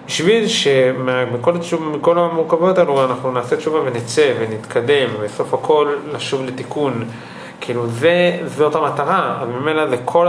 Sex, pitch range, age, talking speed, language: male, 115-150 Hz, 30-49, 155 wpm, Hebrew